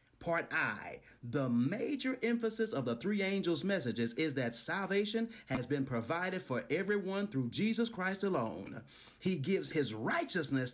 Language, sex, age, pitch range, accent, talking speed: English, male, 40-59, 125-175 Hz, American, 145 wpm